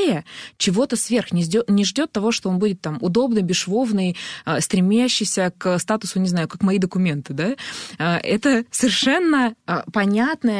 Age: 20-39